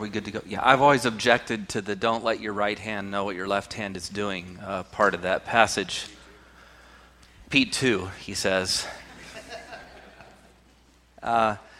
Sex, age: male, 30-49